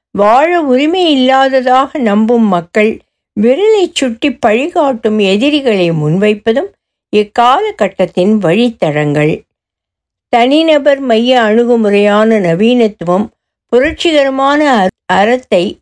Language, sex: Tamil, female